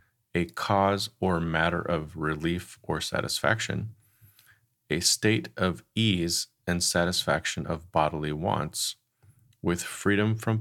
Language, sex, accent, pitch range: English, male, American, 85-115 Hz